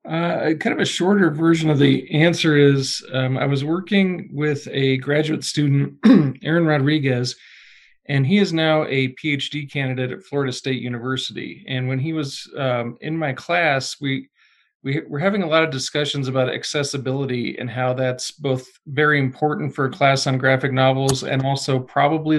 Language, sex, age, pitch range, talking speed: English, male, 40-59, 125-150 Hz, 170 wpm